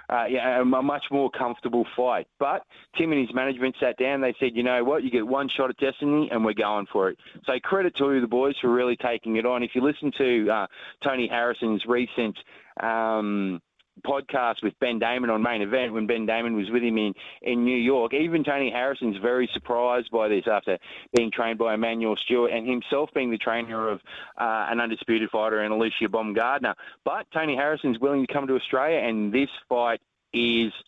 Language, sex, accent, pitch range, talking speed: English, male, Australian, 115-130 Hz, 200 wpm